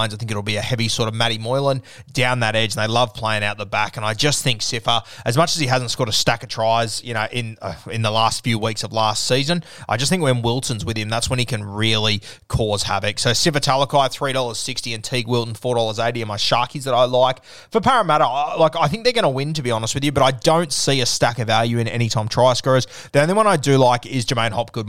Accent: Australian